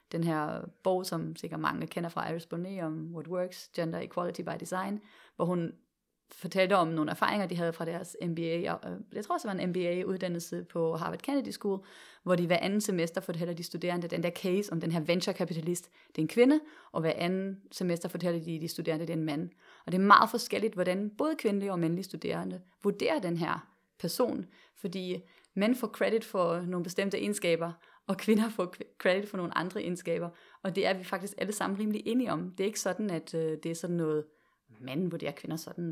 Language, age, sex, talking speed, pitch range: Danish, 30-49, female, 205 wpm, 170-200 Hz